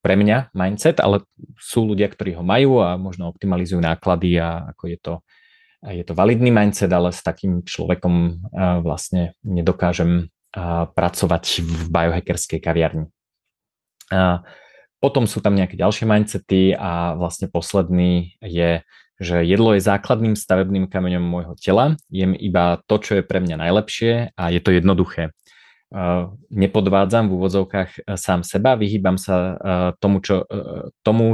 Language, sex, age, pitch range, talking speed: Slovak, male, 20-39, 85-100 Hz, 135 wpm